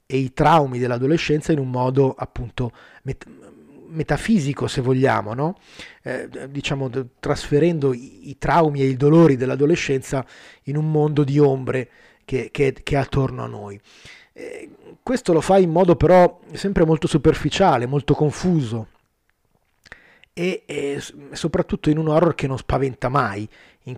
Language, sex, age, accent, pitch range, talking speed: Italian, male, 30-49, native, 130-155 Hz, 140 wpm